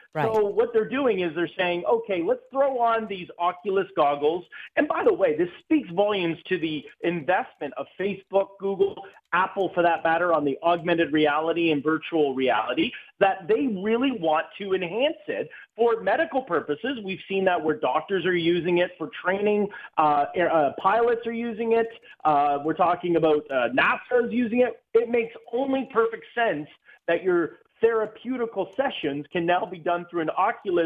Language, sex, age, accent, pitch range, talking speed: English, male, 40-59, American, 165-230 Hz, 175 wpm